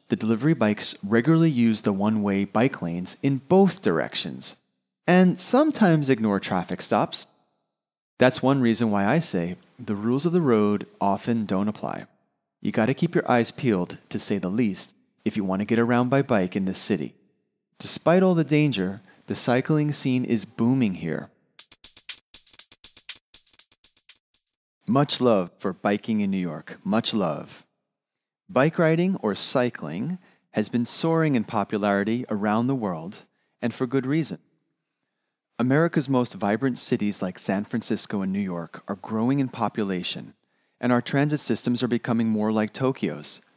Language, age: Japanese, 30-49